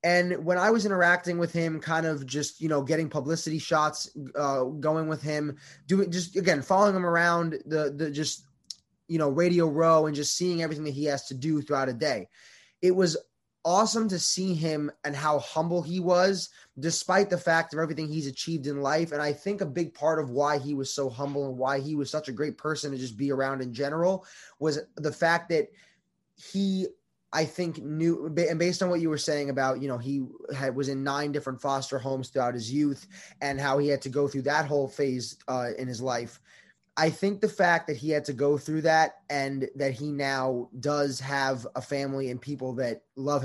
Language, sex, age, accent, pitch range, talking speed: English, male, 20-39, American, 135-165 Hz, 215 wpm